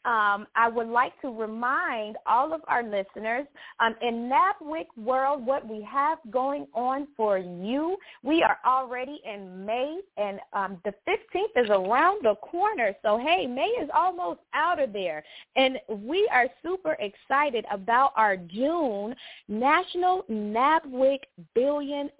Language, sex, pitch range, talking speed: English, female, 205-295 Hz, 145 wpm